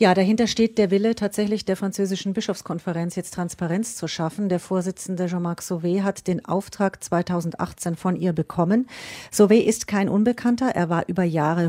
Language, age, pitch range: German, 40-59, 170-195 Hz